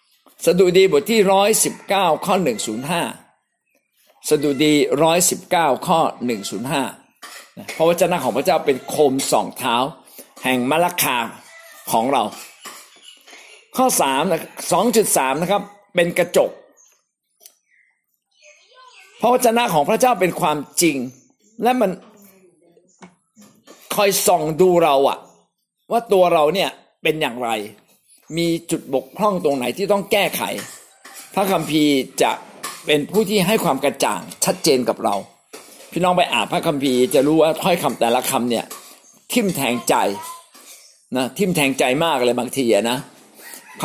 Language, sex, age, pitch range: Thai, male, 60-79, 150-205 Hz